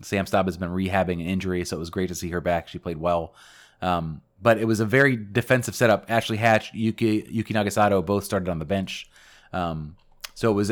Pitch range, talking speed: 95-115 Hz, 225 wpm